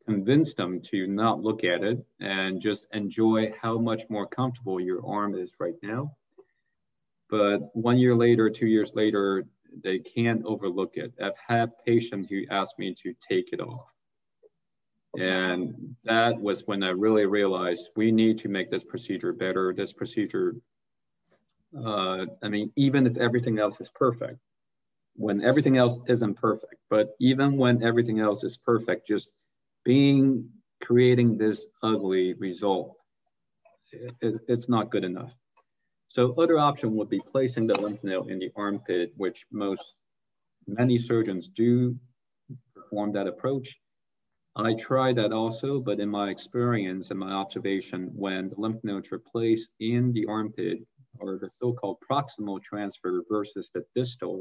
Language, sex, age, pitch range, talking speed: English, male, 40-59, 100-125 Hz, 150 wpm